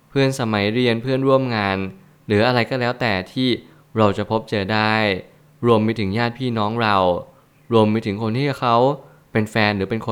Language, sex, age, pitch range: Thai, male, 20-39, 105-125 Hz